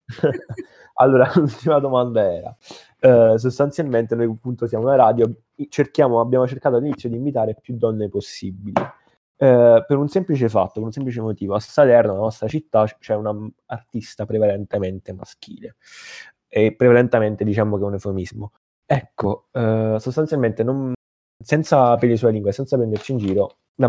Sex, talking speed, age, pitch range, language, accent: male, 150 wpm, 20-39, 105-125 Hz, Italian, native